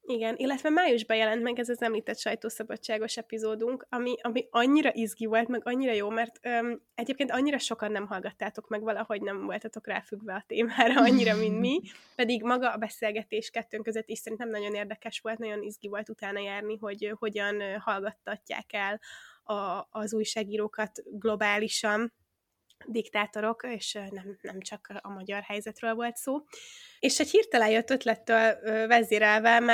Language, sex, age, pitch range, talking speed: Hungarian, female, 20-39, 215-240 Hz, 155 wpm